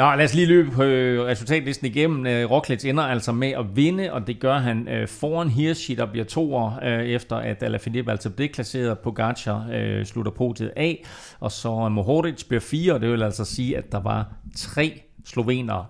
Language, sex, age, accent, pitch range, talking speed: Danish, male, 30-49, native, 110-130 Hz, 190 wpm